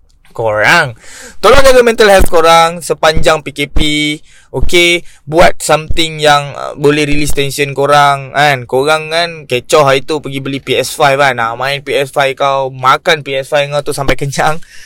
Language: Malay